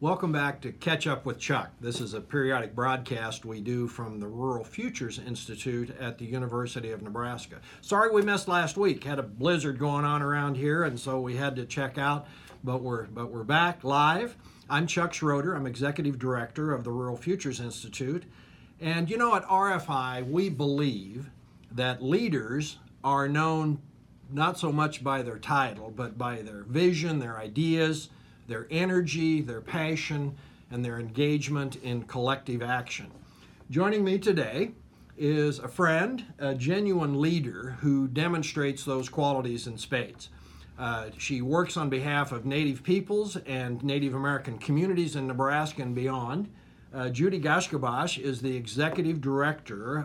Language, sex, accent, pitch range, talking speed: English, male, American, 125-155 Hz, 155 wpm